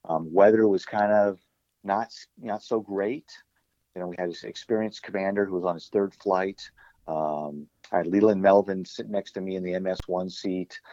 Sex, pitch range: male, 90-105 Hz